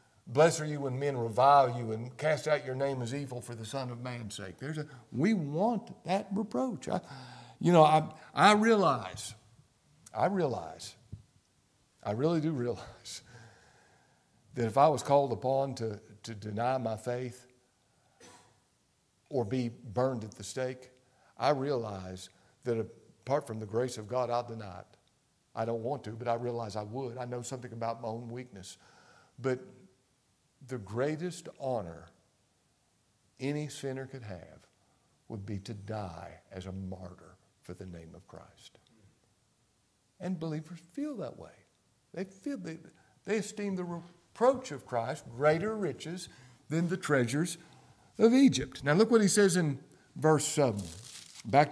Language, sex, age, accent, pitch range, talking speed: English, male, 50-69, American, 110-150 Hz, 155 wpm